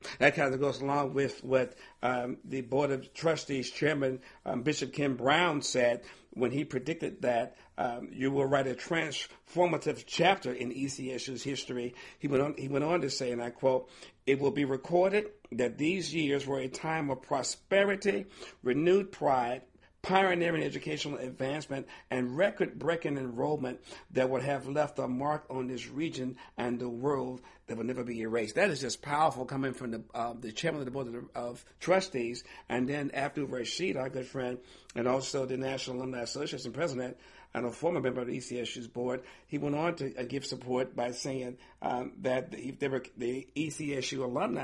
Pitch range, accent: 125-145 Hz, American